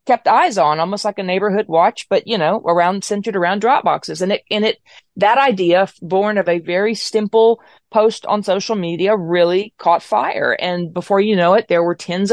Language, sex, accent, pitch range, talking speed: English, female, American, 180-225 Hz, 205 wpm